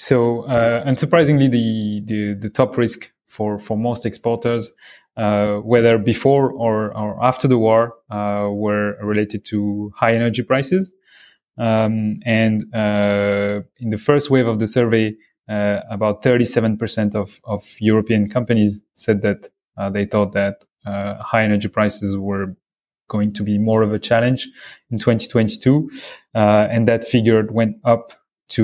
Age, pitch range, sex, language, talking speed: 20-39, 105-120 Hz, male, English, 150 wpm